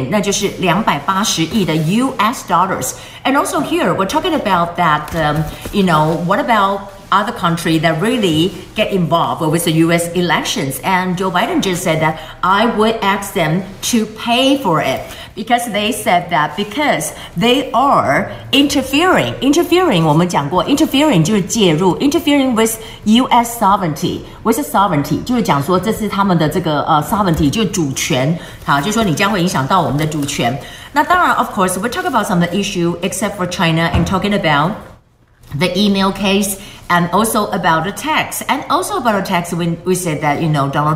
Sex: female